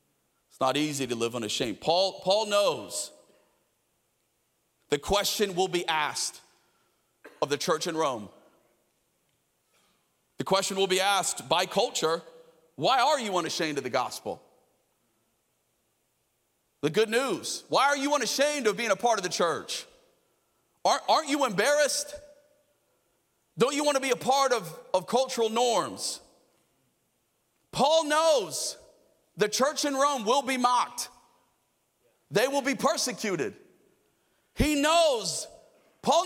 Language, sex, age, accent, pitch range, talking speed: English, male, 30-49, American, 165-275 Hz, 130 wpm